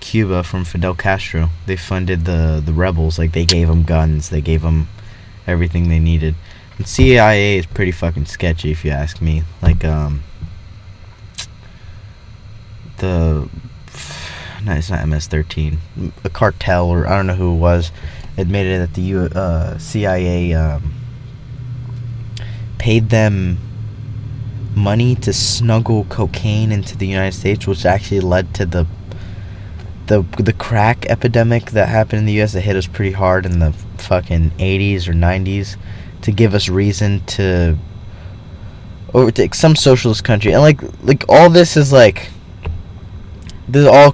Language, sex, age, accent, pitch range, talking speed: English, male, 20-39, American, 85-110 Hz, 145 wpm